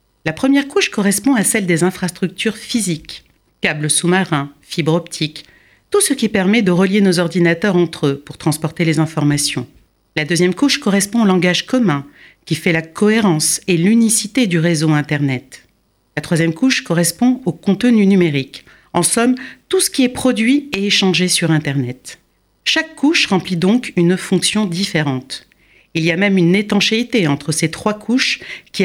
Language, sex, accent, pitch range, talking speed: French, female, French, 165-230 Hz, 165 wpm